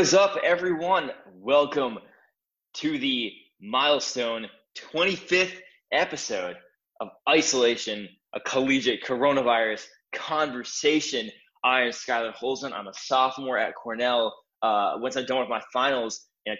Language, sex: English, male